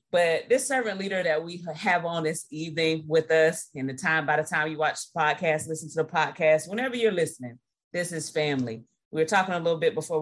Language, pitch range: English, 140-165 Hz